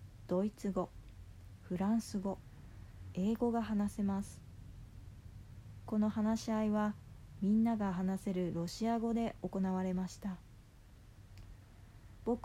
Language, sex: Japanese, female